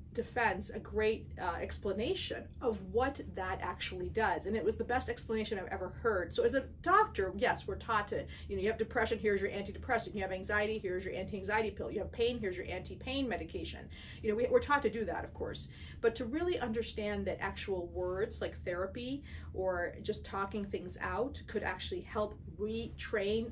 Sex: female